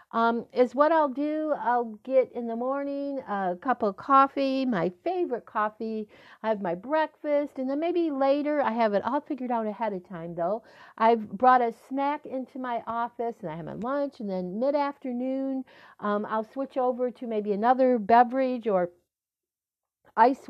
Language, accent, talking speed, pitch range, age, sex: English, American, 175 wpm, 210-270 Hz, 50-69, female